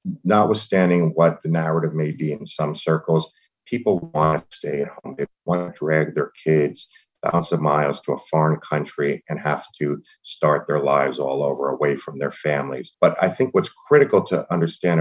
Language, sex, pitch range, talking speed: English, male, 75-85 Hz, 190 wpm